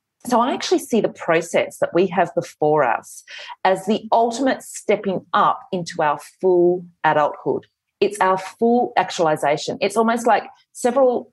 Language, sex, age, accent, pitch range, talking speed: English, female, 30-49, Australian, 170-225 Hz, 150 wpm